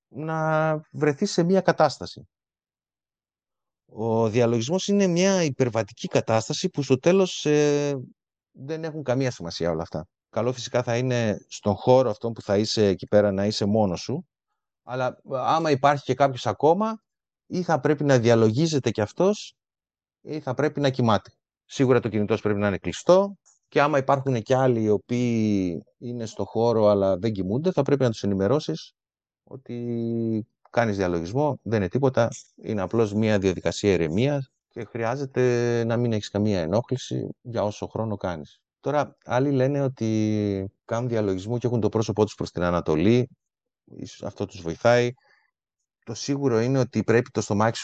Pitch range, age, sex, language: 105-130 Hz, 30-49, male, Greek